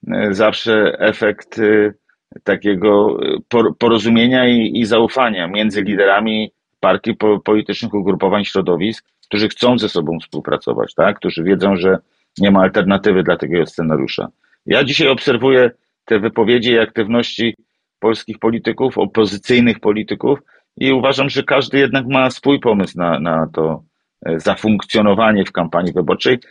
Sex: male